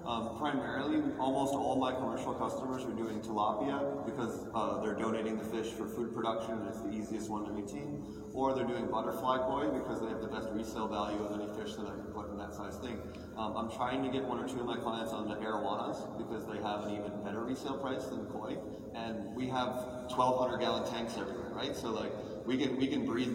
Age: 20-39